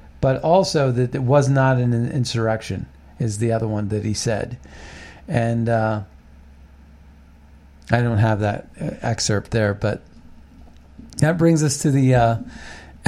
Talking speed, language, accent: 140 wpm, English, American